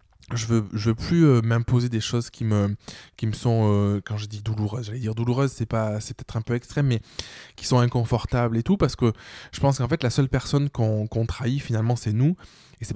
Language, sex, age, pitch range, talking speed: French, male, 20-39, 110-135 Hz, 245 wpm